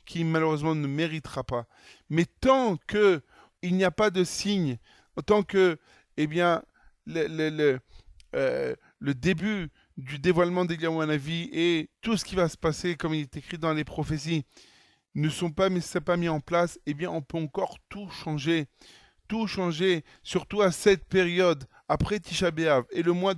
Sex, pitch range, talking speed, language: male, 150-180 Hz, 170 wpm, French